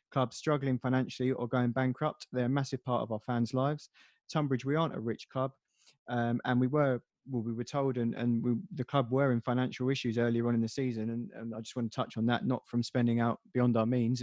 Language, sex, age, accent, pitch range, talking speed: English, male, 20-39, British, 120-140 Hz, 245 wpm